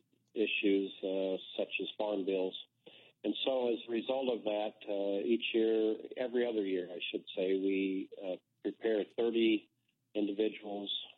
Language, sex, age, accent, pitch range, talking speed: English, male, 50-69, American, 100-110 Hz, 145 wpm